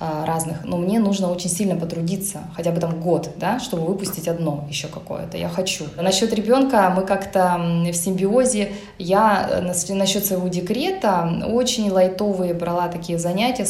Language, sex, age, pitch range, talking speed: Russian, female, 20-39, 175-215 Hz, 150 wpm